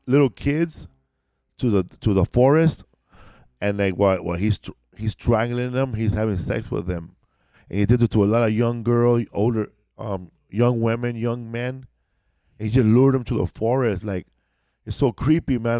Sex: male